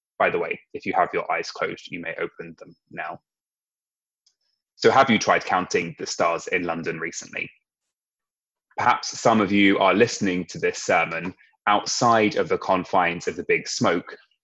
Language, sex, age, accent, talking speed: English, male, 20-39, British, 170 wpm